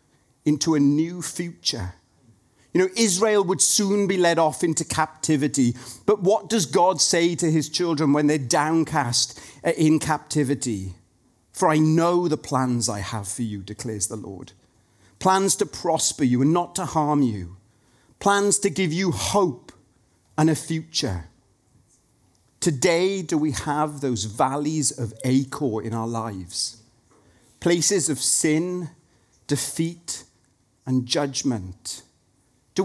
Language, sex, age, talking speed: English, male, 40-59, 135 wpm